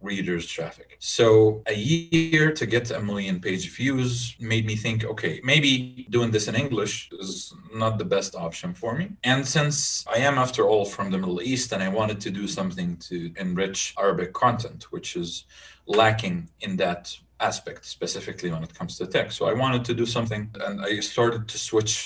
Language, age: English, 30-49